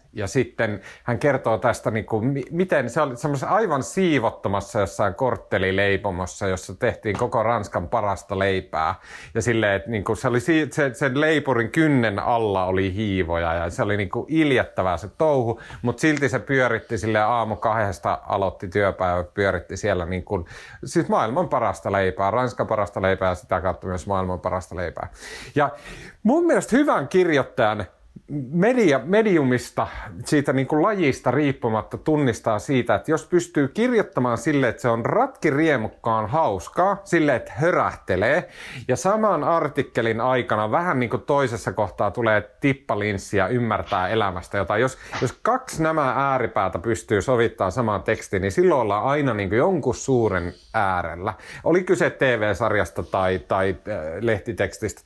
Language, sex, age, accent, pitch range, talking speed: Finnish, male, 30-49, native, 100-140 Hz, 145 wpm